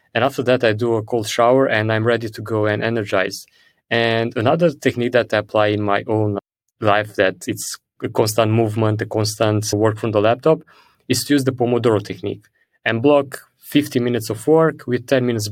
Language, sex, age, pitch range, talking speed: English, male, 20-39, 110-125 Hz, 195 wpm